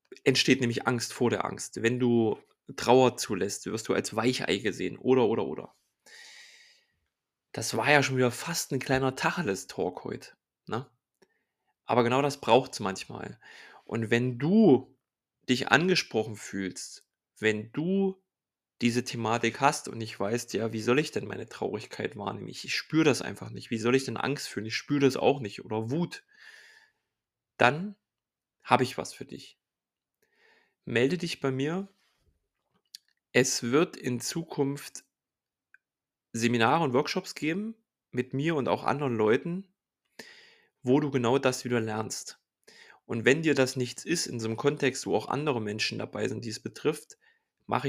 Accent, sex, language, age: German, male, German, 20-39